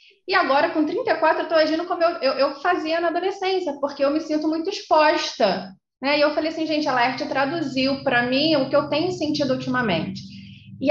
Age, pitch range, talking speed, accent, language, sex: 20-39, 220-295 Hz, 210 wpm, Brazilian, Portuguese, female